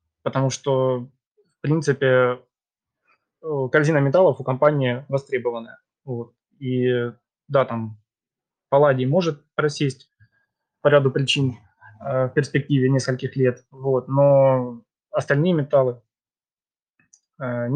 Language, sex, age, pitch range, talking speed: Russian, male, 20-39, 125-140 Hz, 90 wpm